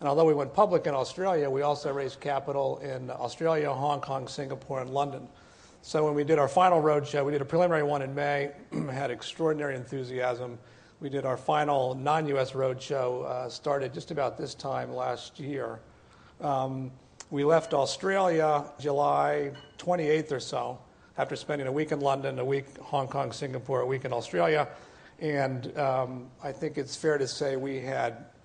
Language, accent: English, American